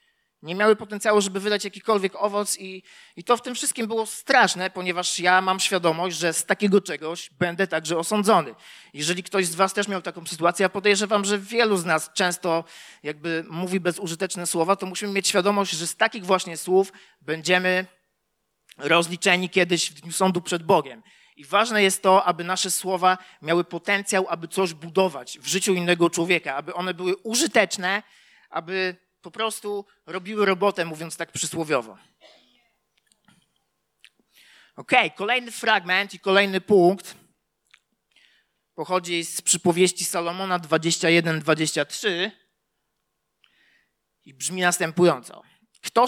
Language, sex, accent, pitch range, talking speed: Polish, male, native, 175-200 Hz, 140 wpm